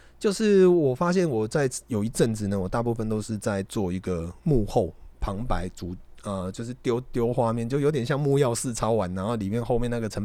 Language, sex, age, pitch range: Chinese, male, 30-49, 100-130 Hz